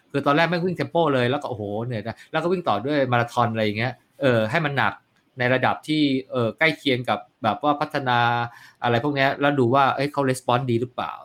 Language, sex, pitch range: Thai, male, 115-145 Hz